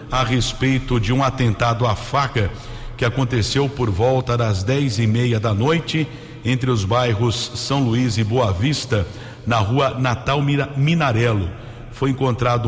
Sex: male